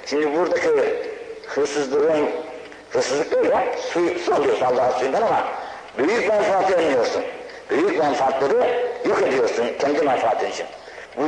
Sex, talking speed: male, 115 wpm